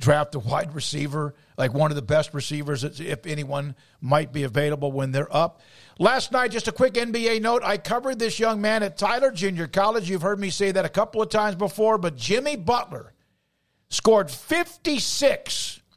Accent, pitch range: American, 155-220 Hz